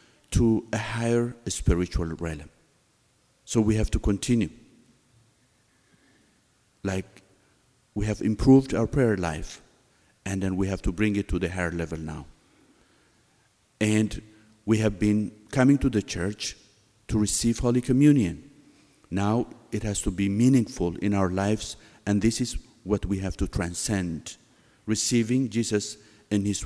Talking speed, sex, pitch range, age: 140 wpm, male, 95-120 Hz, 50-69